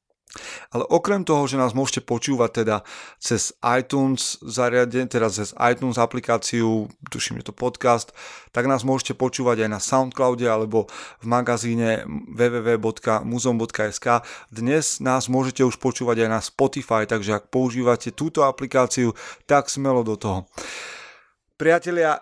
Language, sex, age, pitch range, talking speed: Slovak, male, 30-49, 115-145 Hz, 125 wpm